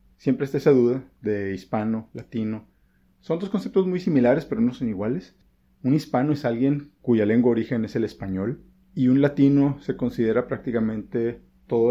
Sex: male